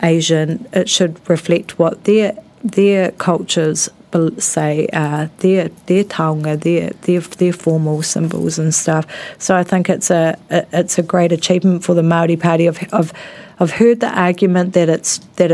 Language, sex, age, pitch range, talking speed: English, female, 40-59, 165-195 Hz, 165 wpm